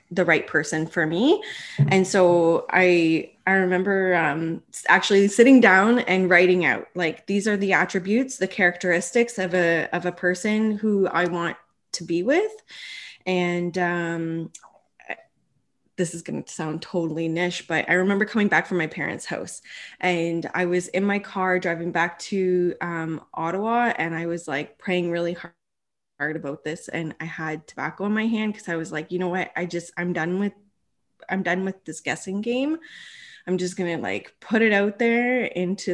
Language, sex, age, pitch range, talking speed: English, female, 20-39, 165-195 Hz, 180 wpm